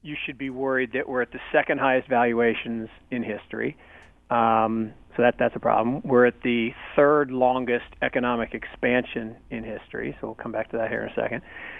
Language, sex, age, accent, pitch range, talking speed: English, male, 40-59, American, 120-140 Hz, 185 wpm